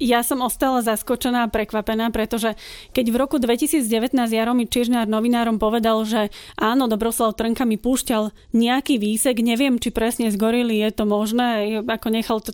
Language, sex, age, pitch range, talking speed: Slovak, female, 30-49, 220-250 Hz, 160 wpm